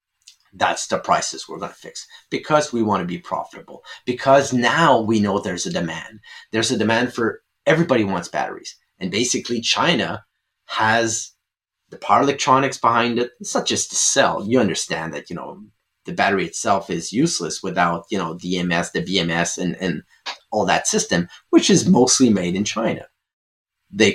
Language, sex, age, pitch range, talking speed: English, male, 30-49, 100-140 Hz, 170 wpm